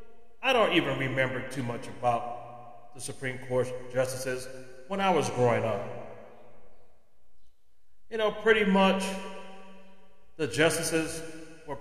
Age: 40-59